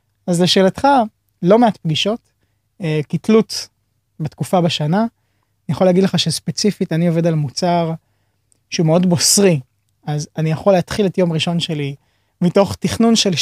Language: Hebrew